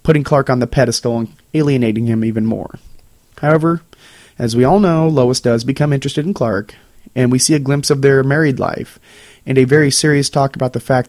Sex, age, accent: male, 30-49, American